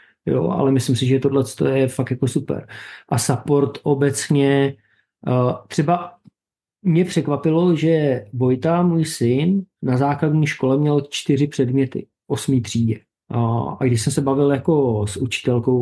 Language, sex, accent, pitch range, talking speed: Czech, male, native, 120-135 Hz, 140 wpm